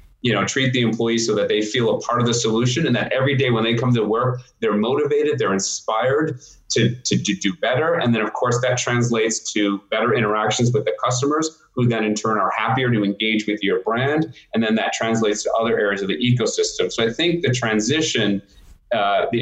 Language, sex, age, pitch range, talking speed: English, male, 30-49, 110-135 Hz, 225 wpm